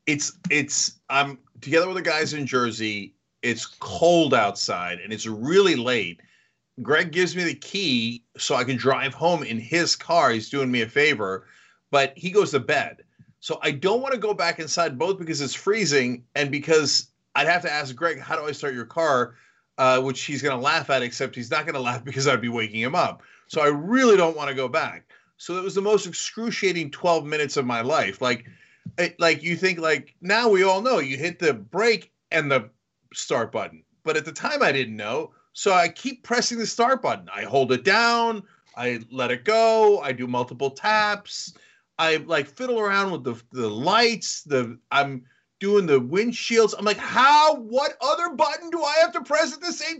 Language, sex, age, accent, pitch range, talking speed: English, male, 40-59, American, 135-215 Hz, 210 wpm